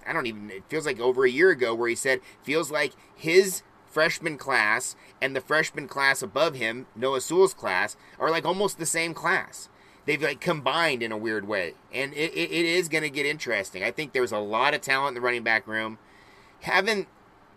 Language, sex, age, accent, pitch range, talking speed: English, male, 30-49, American, 130-170 Hz, 210 wpm